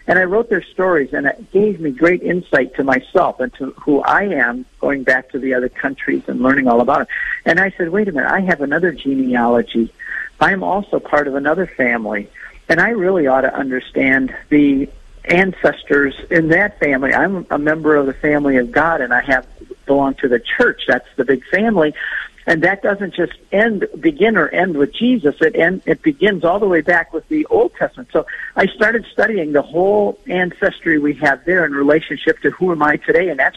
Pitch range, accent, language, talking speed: 140-190 Hz, American, English, 205 wpm